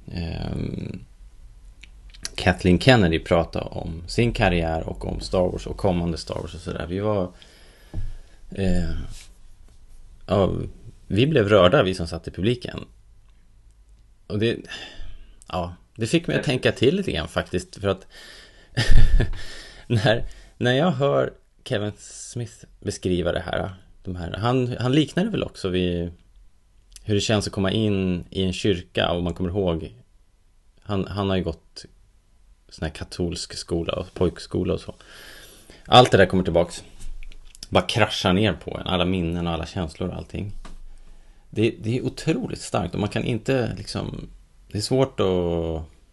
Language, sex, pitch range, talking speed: Swedish, male, 85-105 Hz, 150 wpm